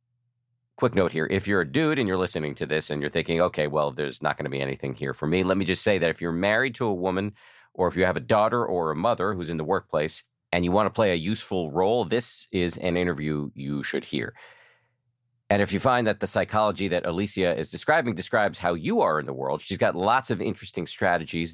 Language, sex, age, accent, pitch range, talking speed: English, male, 40-59, American, 75-100 Hz, 250 wpm